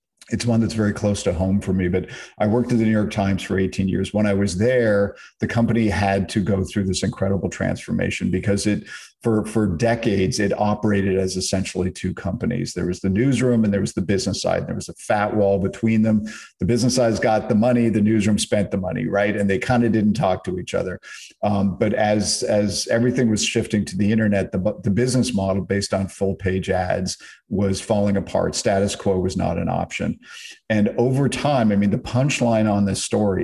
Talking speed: 215 wpm